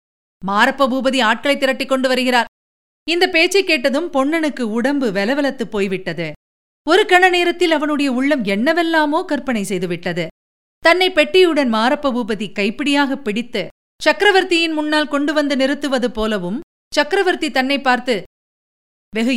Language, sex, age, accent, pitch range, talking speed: Tamil, female, 50-69, native, 225-305 Hz, 105 wpm